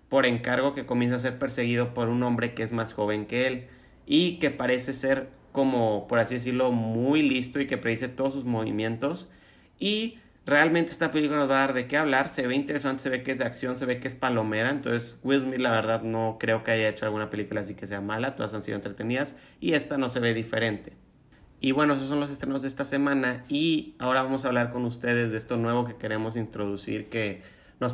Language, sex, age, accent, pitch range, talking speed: Spanish, male, 30-49, Mexican, 115-135 Hz, 230 wpm